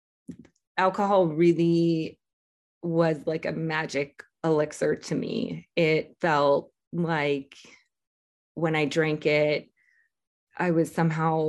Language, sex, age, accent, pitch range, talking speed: English, female, 20-39, American, 150-170 Hz, 100 wpm